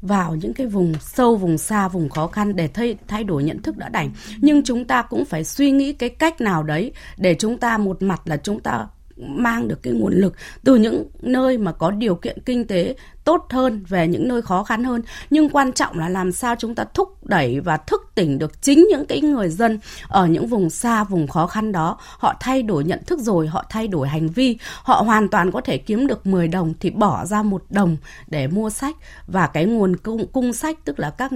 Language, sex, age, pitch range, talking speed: Vietnamese, female, 20-39, 180-255 Hz, 235 wpm